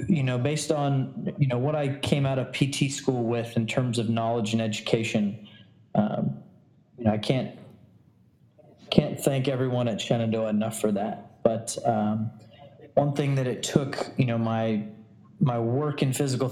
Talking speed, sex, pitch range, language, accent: 170 wpm, male, 115-135 Hz, English, American